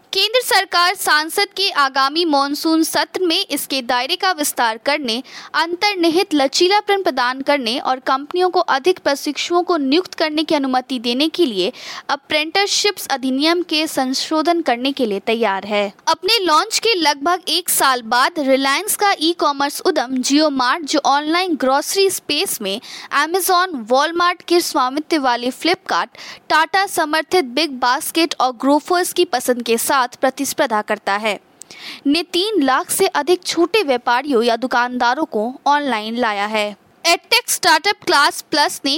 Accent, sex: Indian, female